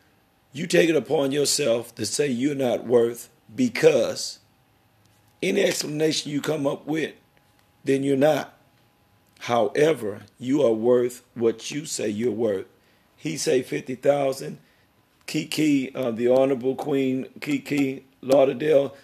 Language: English